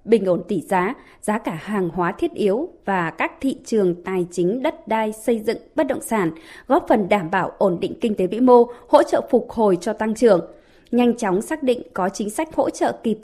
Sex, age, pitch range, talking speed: female, 20-39, 205-265 Hz, 225 wpm